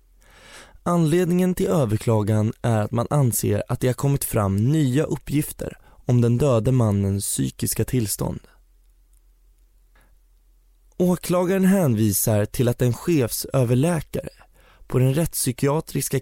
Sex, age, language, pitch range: male, 20-39, Swedish, 115-140 Hz